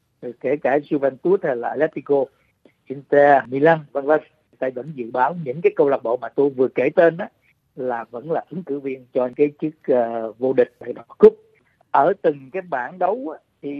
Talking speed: 205 wpm